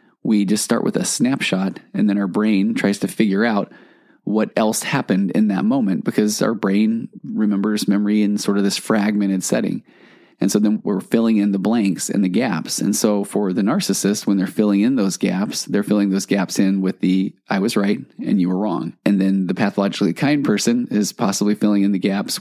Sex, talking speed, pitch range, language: male, 210 wpm, 95-115 Hz, English